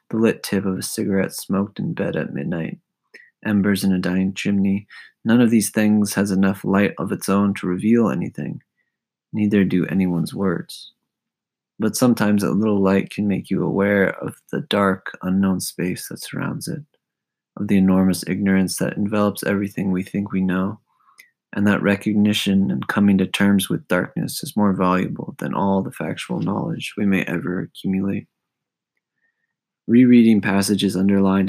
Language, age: English, 20-39